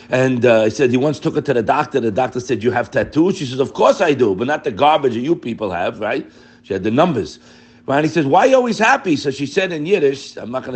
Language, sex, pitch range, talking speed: English, male, 115-160 Hz, 295 wpm